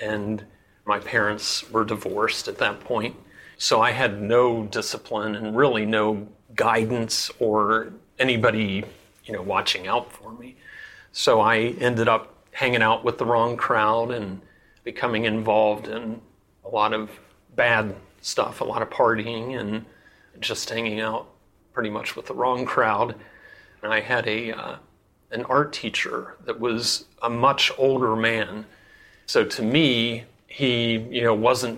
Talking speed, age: 150 wpm, 40-59